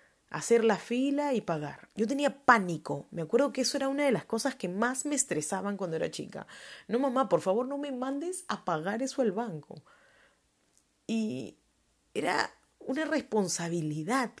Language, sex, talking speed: Spanish, female, 165 wpm